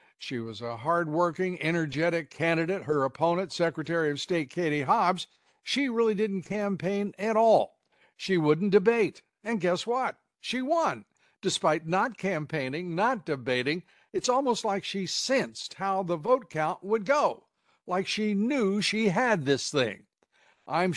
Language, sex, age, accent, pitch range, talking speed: English, male, 60-79, American, 150-200 Hz, 145 wpm